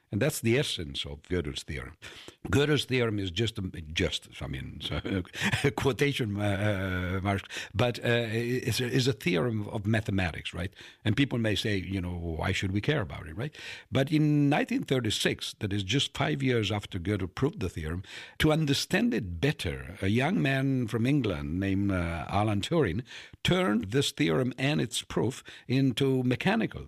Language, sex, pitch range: Italian, male, 100-130 Hz